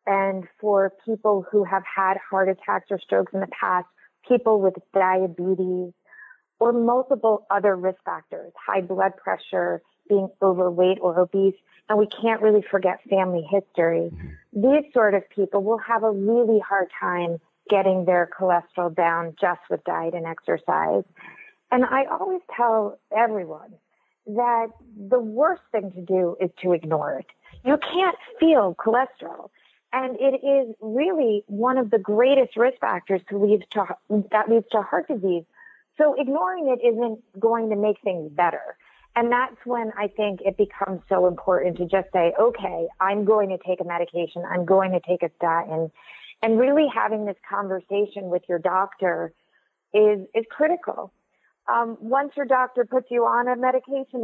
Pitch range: 185-240 Hz